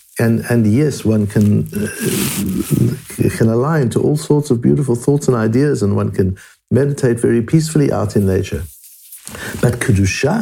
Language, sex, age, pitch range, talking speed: English, male, 60-79, 100-140 Hz, 155 wpm